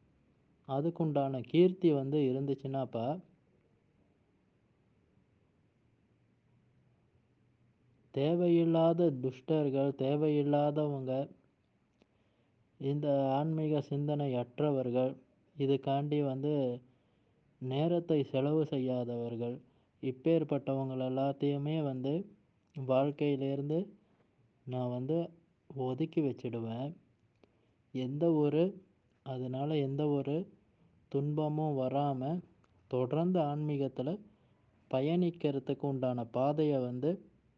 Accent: native